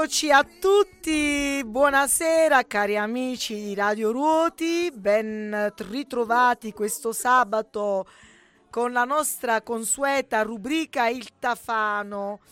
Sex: female